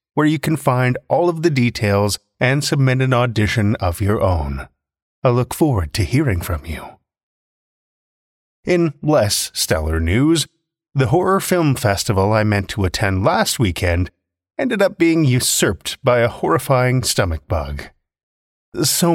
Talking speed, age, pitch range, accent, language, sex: 145 wpm, 30-49, 90-145 Hz, American, English, male